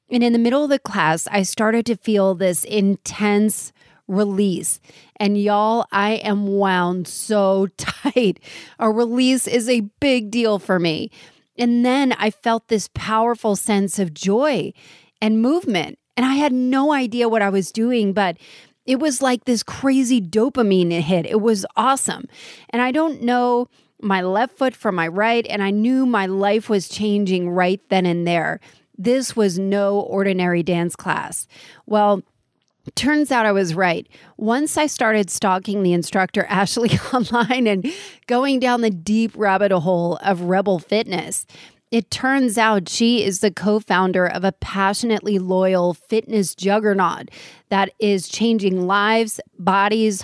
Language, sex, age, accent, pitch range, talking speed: English, female, 30-49, American, 190-235 Hz, 155 wpm